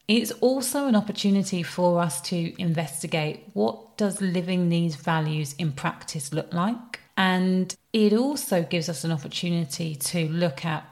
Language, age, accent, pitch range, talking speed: English, 30-49, British, 165-195 Hz, 150 wpm